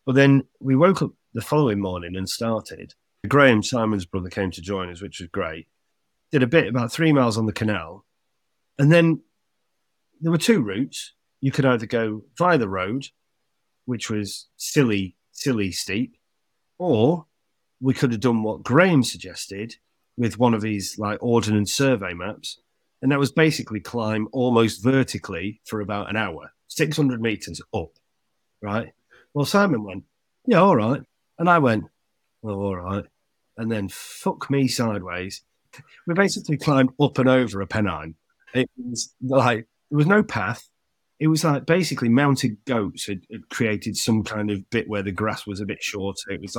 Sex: male